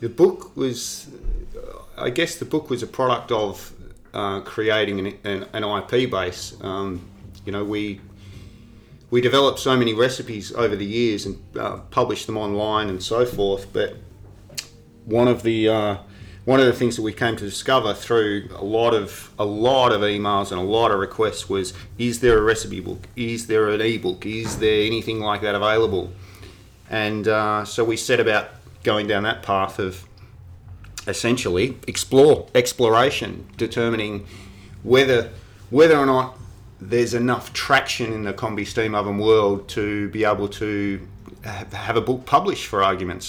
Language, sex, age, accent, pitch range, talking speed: English, male, 30-49, Australian, 100-115 Hz, 165 wpm